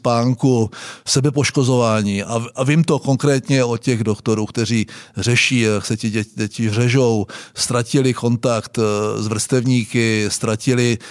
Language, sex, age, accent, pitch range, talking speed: Czech, male, 50-69, native, 115-140 Hz, 115 wpm